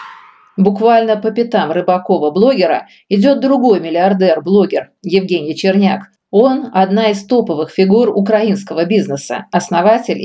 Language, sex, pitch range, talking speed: Russian, female, 175-220 Hz, 100 wpm